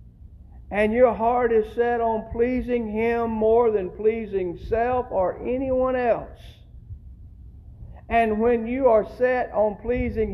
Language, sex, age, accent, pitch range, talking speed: English, male, 50-69, American, 195-235 Hz, 130 wpm